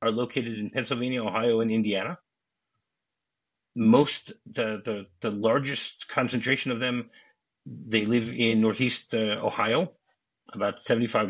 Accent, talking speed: American, 120 wpm